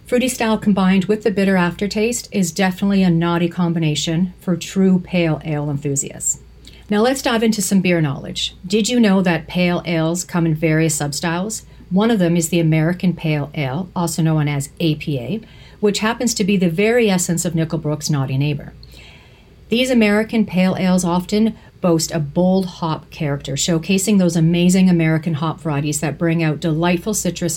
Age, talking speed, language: 40-59, 170 wpm, English